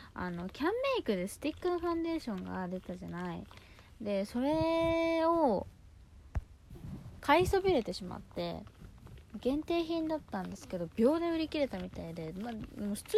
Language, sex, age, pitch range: Japanese, female, 20-39, 175-270 Hz